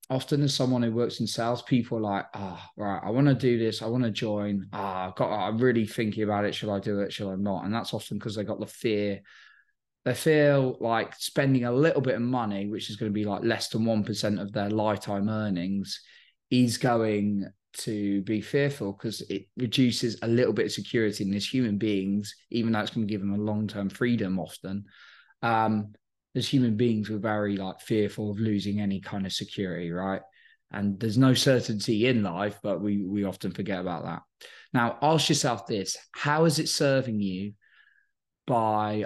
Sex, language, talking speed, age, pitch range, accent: male, English, 205 wpm, 20-39, 100-120 Hz, British